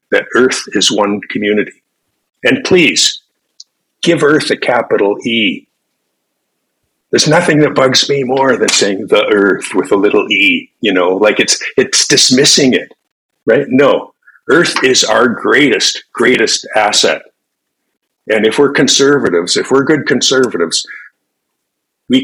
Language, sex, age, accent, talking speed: English, male, 50-69, American, 135 wpm